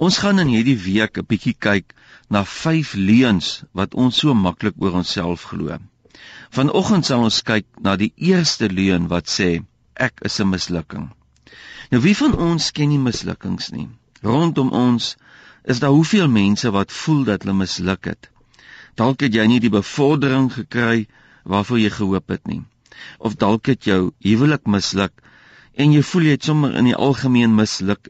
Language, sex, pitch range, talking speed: English, male, 100-140 Hz, 175 wpm